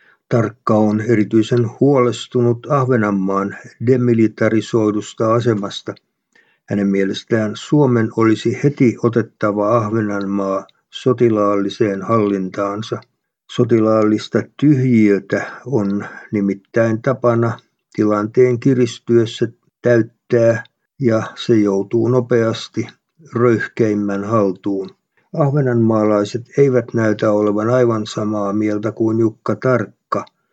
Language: Finnish